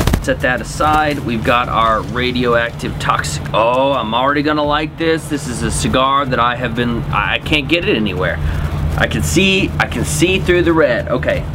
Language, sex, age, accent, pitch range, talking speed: English, male, 30-49, American, 105-150 Hz, 190 wpm